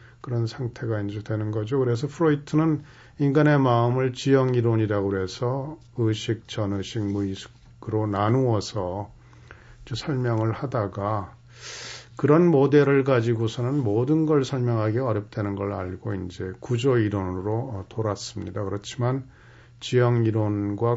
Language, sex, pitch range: Korean, male, 100-125 Hz